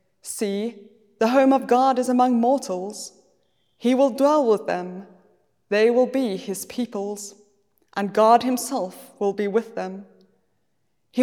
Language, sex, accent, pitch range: English, female, British, 190-255 Hz